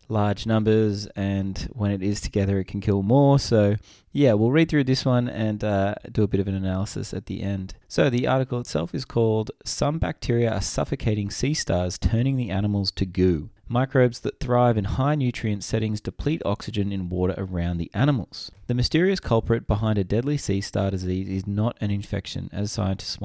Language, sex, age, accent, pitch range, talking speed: English, male, 20-39, Australian, 95-120 Hz, 195 wpm